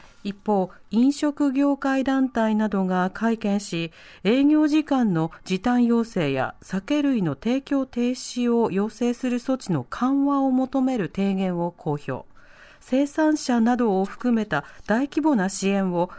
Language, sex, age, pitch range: Japanese, female, 40-59, 190-270 Hz